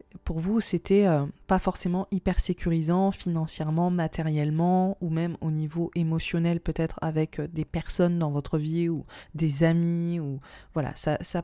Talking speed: 145 wpm